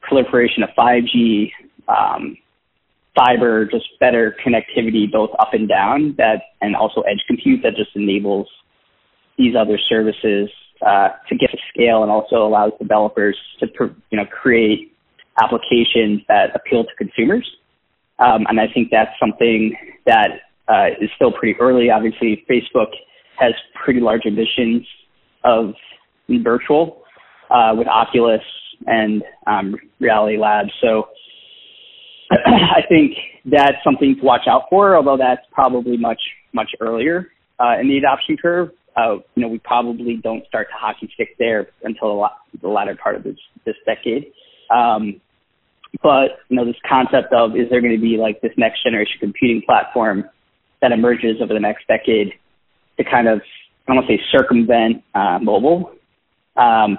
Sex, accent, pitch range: male, American, 110-140 Hz